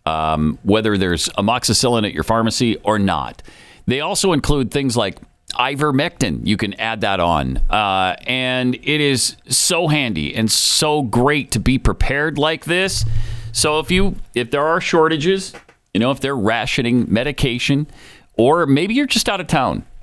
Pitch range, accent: 95-145 Hz, American